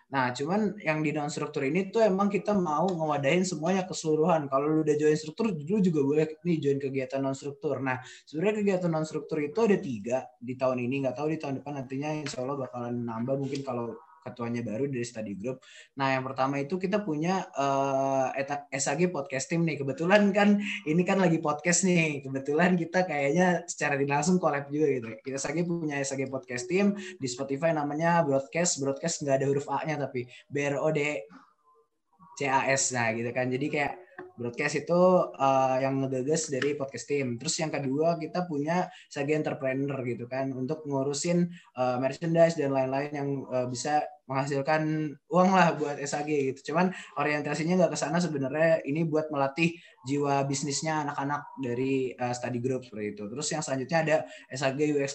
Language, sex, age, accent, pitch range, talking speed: Indonesian, male, 20-39, native, 135-165 Hz, 170 wpm